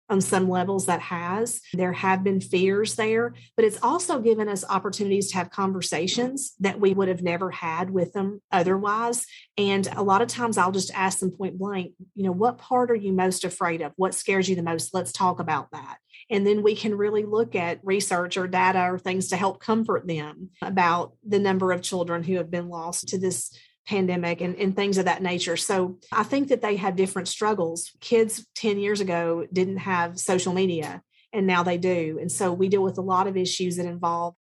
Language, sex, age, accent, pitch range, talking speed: English, female, 40-59, American, 180-205 Hz, 210 wpm